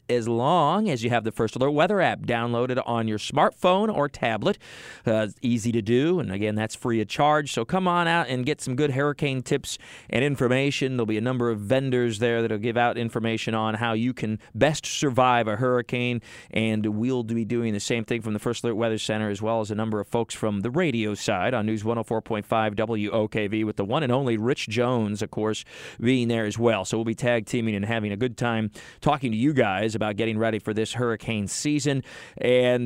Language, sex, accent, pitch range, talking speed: English, male, American, 110-130 Hz, 225 wpm